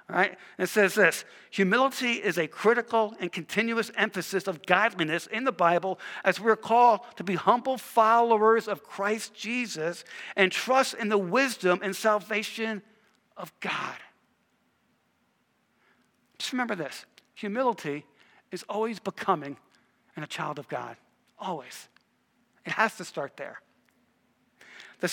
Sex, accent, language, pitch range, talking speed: male, American, English, 175-230 Hz, 130 wpm